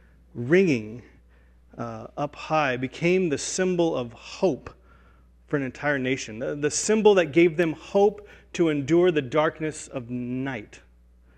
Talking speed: 135 wpm